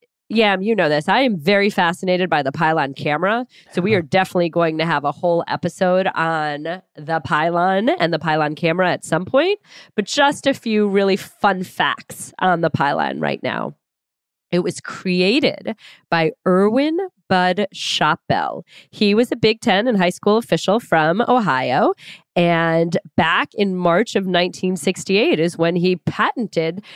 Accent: American